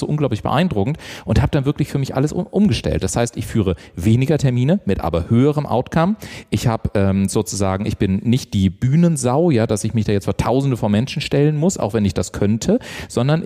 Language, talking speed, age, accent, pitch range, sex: German, 210 wpm, 40-59, German, 105-145 Hz, male